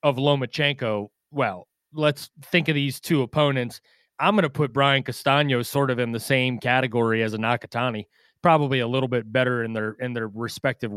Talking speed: 185 wpm